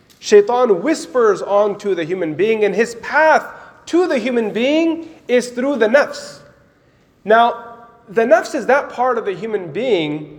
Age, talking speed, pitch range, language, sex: 30-49, 155 wpm, 190-285 Hz, English, male